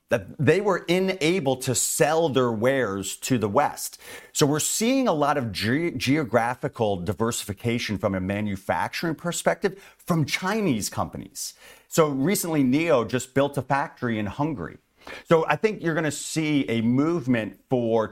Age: 40-59